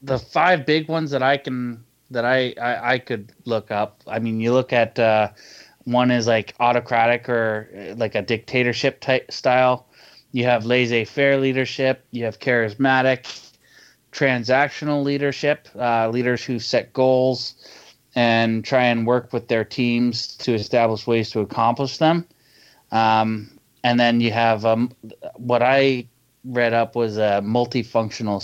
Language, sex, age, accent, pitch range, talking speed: English, male, 20-39, American, 110-130 Hz, 150 wpm